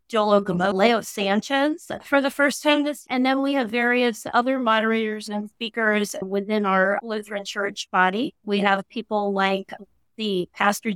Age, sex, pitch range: 30-49, female, 190-230 Hz